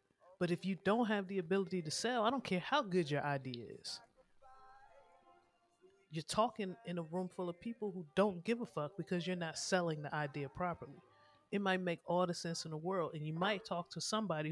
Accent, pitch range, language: American, 140-200 Hz, English